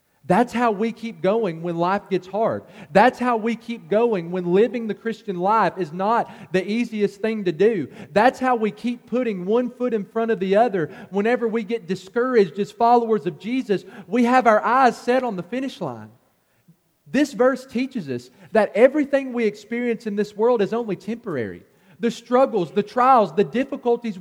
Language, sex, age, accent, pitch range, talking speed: English, male, 40-59, American, 155-230 Hz, 185 wpm